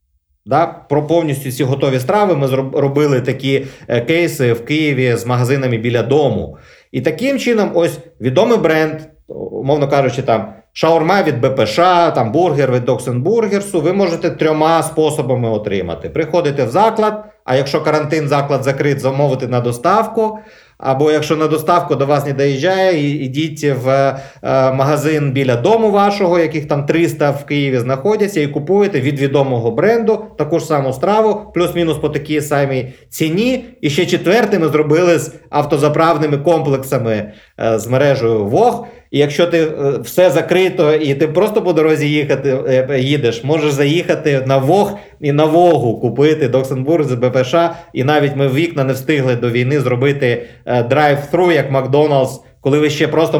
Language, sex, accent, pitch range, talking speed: Ukrainian, male, native, 130-165 Hz, 145 wpm